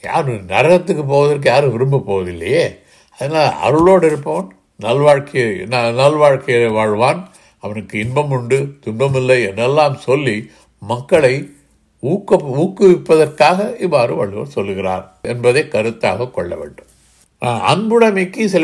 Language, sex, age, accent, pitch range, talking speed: Tamil, male, 60-79, native, 115-175 Hz, 100 wpm